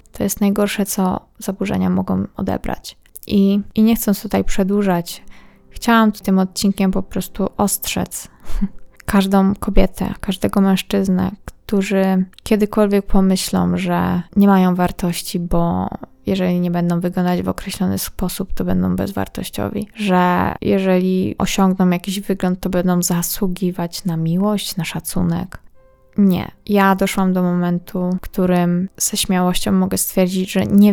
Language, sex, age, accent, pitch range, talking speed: Polish, female, 20-39, native, 180-200 Hz, 130 wpm